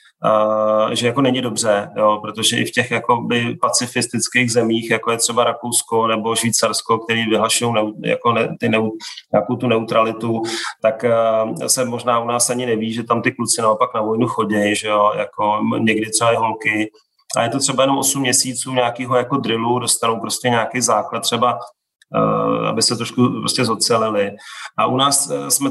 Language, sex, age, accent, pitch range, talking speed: English, male, 30-49, Czech, 110-120 Hz, 175 wpm